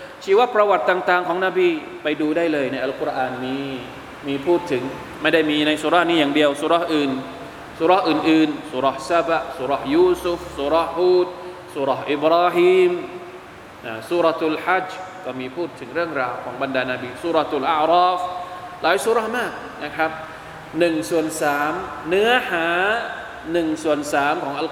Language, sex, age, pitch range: Thai, male, 20-39, 150-180 Hz